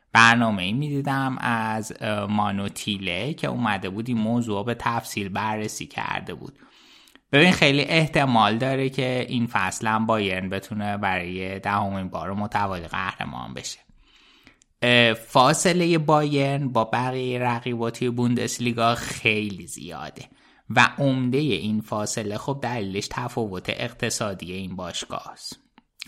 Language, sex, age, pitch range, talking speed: Persian, male, 20-39, 100-125 Hz, 115 wpm